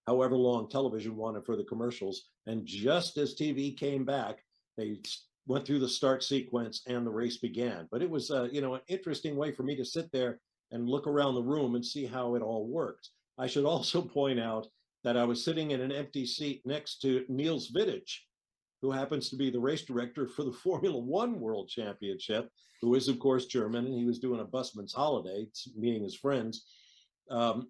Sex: male